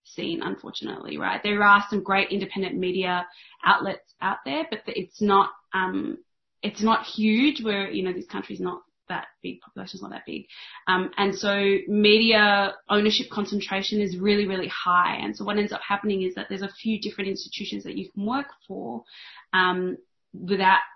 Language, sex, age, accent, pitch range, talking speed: English, female, 20-39, Australian, 190-215 Hz, 175 wpm